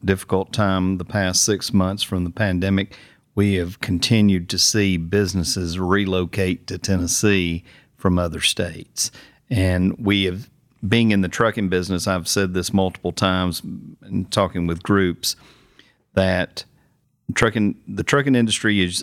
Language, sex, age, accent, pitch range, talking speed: English, male, 40-59, American, 90-105 Hz, 140 wpm